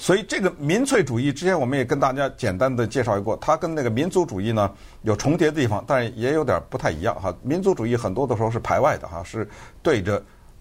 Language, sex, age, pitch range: Chinese, male, 50-69, 105-165 Hz